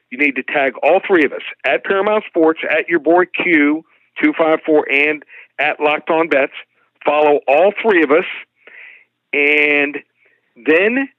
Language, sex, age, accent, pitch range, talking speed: English, male, 50-69, American, 140-170 Hz, 160 wpm